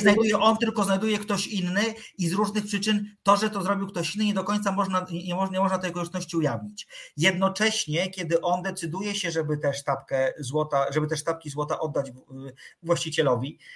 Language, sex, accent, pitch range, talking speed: Polish, male, native, 155-190 Hz, 170 wpm